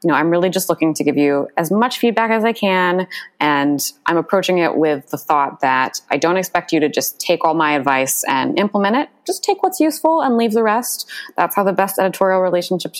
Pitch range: 145-190 Hz